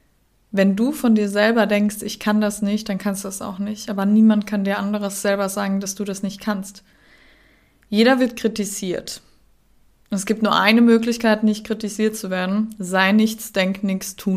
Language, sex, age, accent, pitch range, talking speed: German, female, 20-39, German, 195-215 Hz, 190 wpm